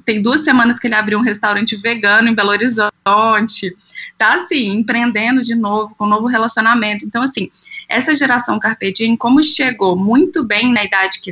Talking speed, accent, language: 175 wpm, Brazilian, Portuguese